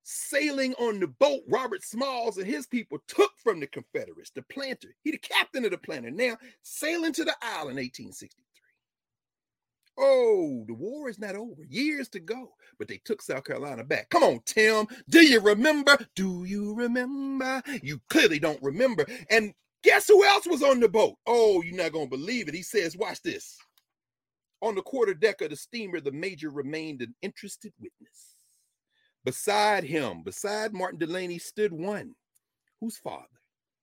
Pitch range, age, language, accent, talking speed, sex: 180-305 Hz, 40-59, English, American, 165 wpm, male